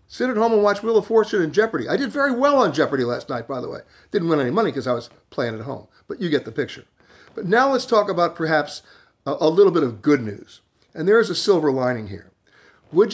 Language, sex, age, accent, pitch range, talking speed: English, male, 50-69, American, 155-235 Hz, 255 wpm